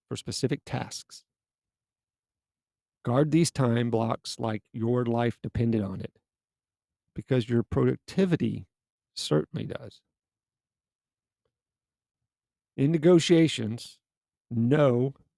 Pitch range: 110-140 Hz